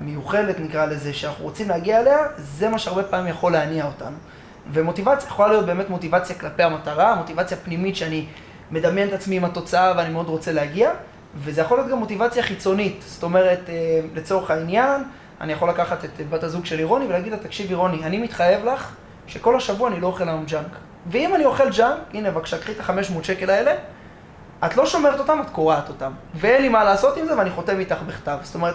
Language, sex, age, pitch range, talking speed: Hebrew, male, 20-39, 160-215 Hz, 155 wpm